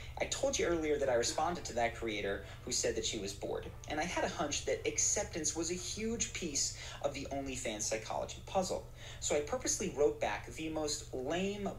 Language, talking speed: English, 205 wpm